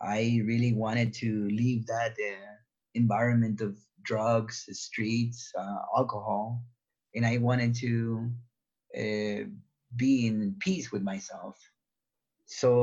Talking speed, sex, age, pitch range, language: 110 wpm, male, 30-49, 110-125 Hz, English